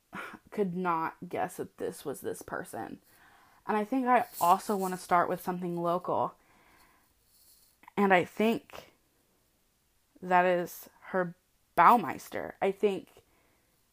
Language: English